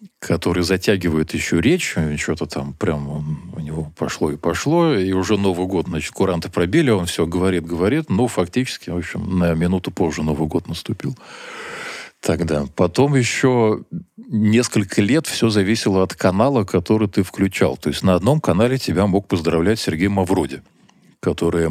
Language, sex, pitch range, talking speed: Russian, male, 80-105 Hz, 155 wpm